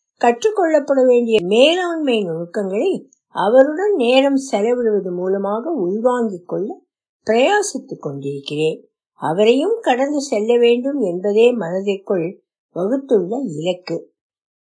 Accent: native